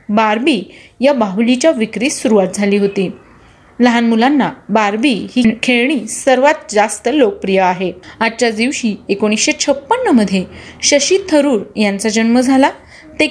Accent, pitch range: native, 210-280 Hz